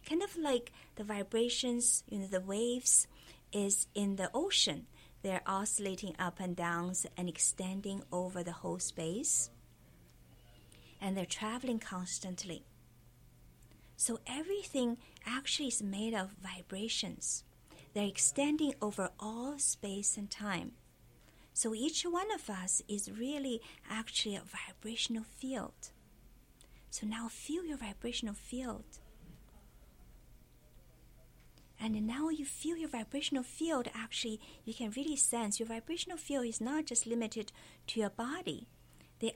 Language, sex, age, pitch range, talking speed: English, female, 50-69, 195-245 Hz, 125 wpm